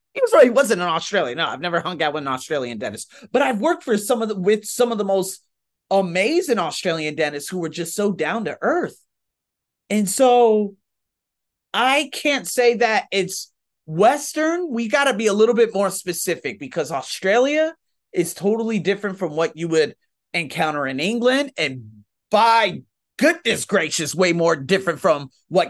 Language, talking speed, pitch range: English, 175 wpm, 145-210 Hz